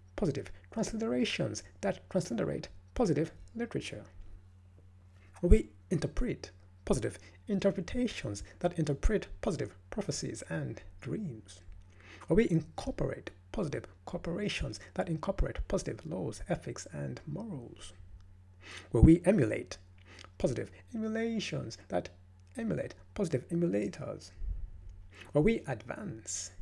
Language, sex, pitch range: English, male, 90-130 Hz